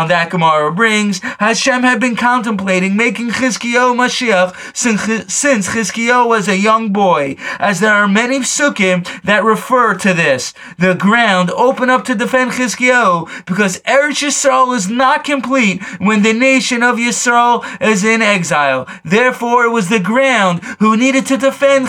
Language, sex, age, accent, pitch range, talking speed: English, male, 20-39, American, 195-245 Hz, 155 wpm